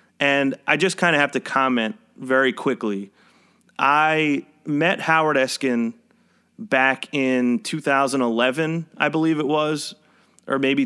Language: English